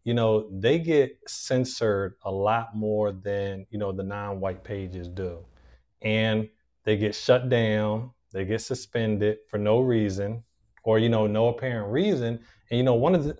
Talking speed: 175 wpm